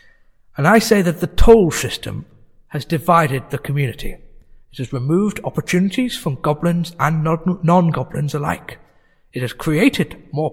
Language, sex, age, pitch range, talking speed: English, male, 60-79, 145-180 Hz, 135 wpm